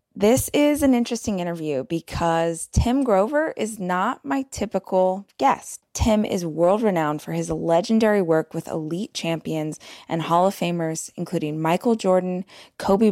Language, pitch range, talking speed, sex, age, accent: English, 165-200 Hz, 140 wpm, female, 20-39, American